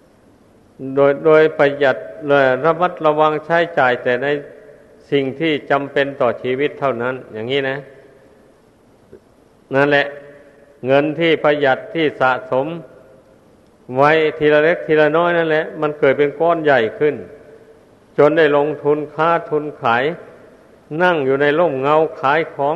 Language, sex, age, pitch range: Thai, male, 50-69, 135-160 Hz